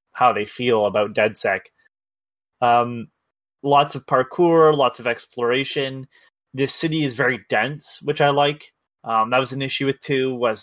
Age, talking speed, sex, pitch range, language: 20-39, 160 wpm, male, 125-150 Hz, English